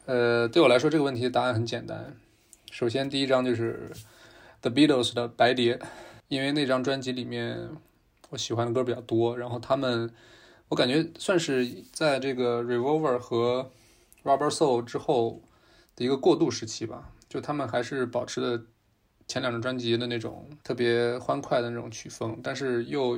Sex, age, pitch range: male, 20-39, 115-135 Hz